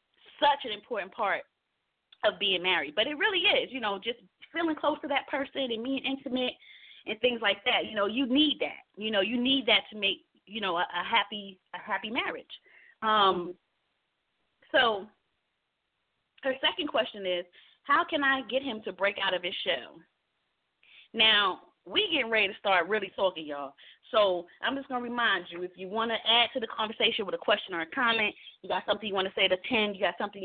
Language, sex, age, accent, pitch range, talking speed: English, female, 30-49, American, 190-245 Hz, 205 wpm